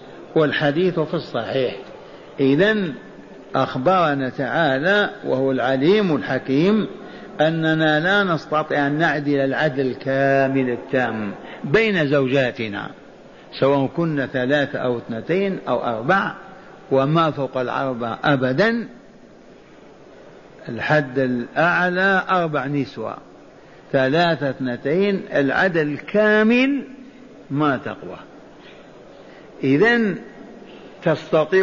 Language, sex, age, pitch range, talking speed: Arabic, male, 60-79, 140-190 Hz, 80 wpm